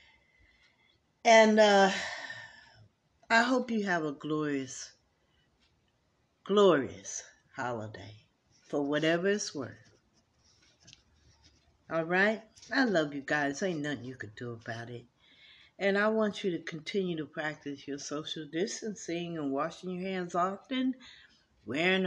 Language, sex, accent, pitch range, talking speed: English, female, American, 135-195 Hz, 120 wpm